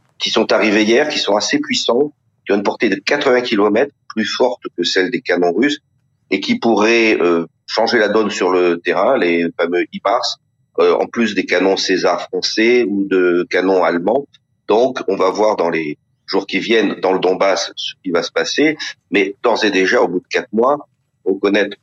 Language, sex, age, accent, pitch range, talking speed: French, male, 40-59, French, 90-135 Hz, 200 wpm